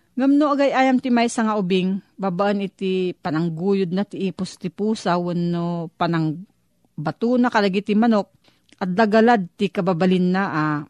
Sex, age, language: female, 40-59, Filipino